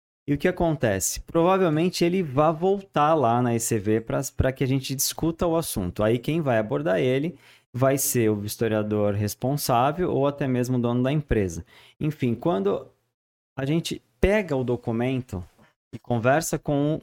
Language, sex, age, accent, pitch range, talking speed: Portuguese, male, 20-39, Brazilian, 110-145 Hz, 160 wpm